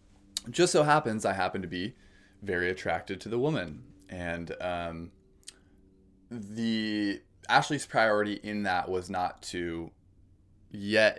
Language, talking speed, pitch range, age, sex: English, 125 wpm, 90-105 Hz, 20-39, male